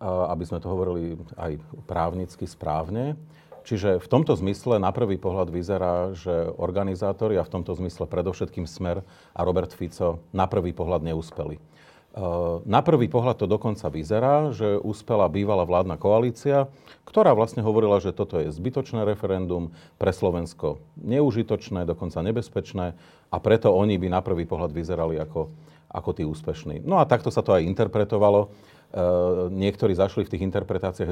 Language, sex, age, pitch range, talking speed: Slovak, male, 40-59, 90-110 Hz, 150 wpm